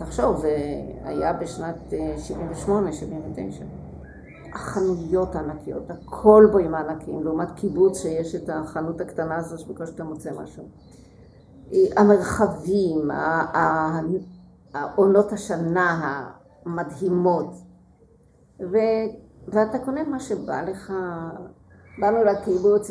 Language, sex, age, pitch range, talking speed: Hebrew, female, 50-69, 160-205 Hz, 95 wpm